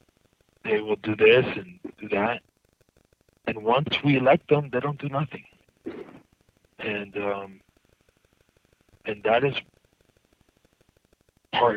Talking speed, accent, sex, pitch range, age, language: 110 wpm, American, male, 105-140 Hz, 50-69, English